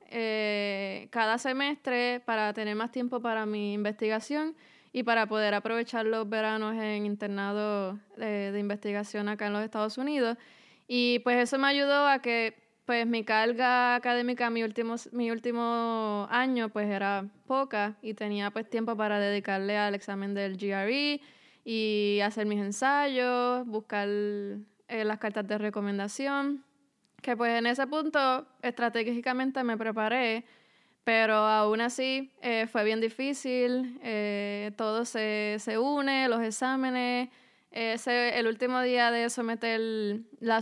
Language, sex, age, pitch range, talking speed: English, female, 20-39, 215-245 Hz, 140 wpm